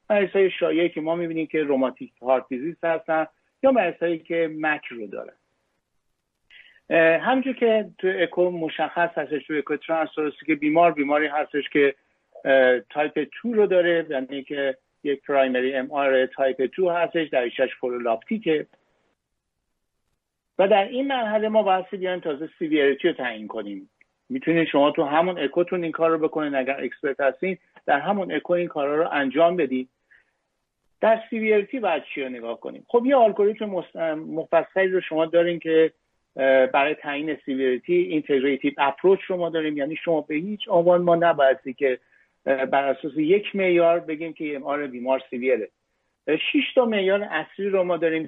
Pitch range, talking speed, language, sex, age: 135-175 Hz, 150 wpm, Persian, male, 50-69